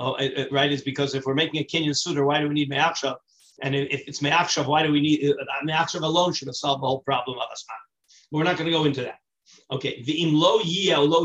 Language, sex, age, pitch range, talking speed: English, male, 40-59, 145-175 Hz, 240 wpm